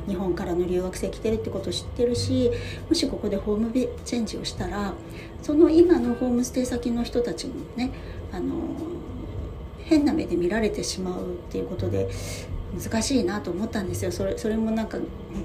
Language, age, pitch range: Japanese, 40-59, 180-250 Hz